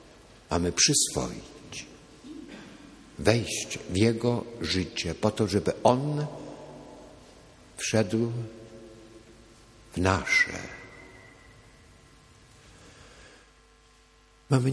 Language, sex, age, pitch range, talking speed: Polish, male, 60-79, 80-120 Hz, 55 wpm